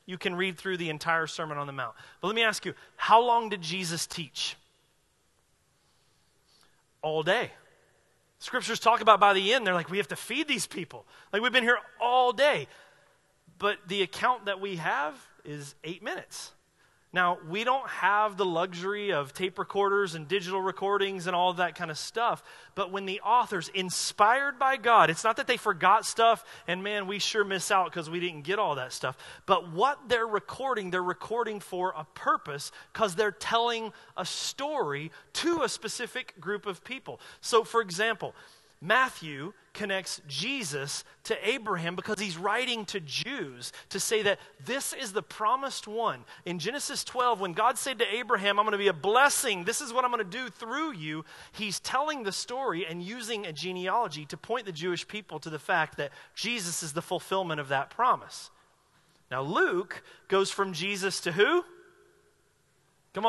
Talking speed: 180 wpm